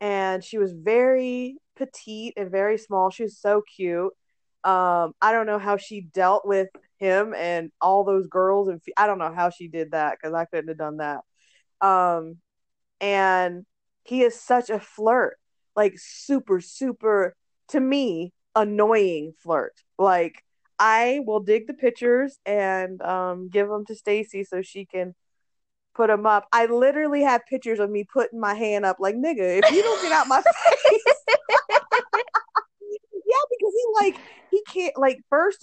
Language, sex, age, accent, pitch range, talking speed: English, female, 20-39, American, 185-245 Hz, 165 wpm